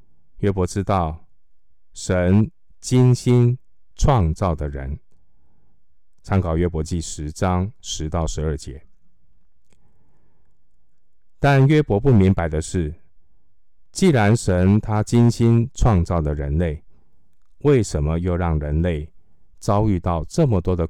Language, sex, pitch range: Chinese, male, 80-100 Hz